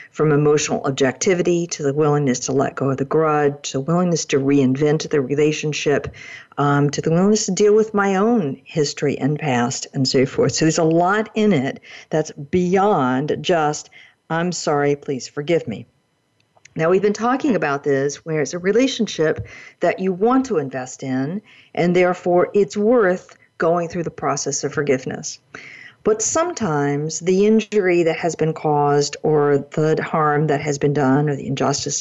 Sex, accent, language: female, American, English